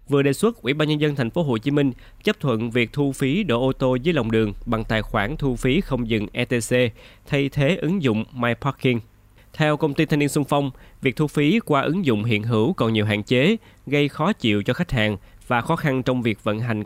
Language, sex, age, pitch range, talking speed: Vietnamese, male, 20-39, 110-140 Hz, 245 wpm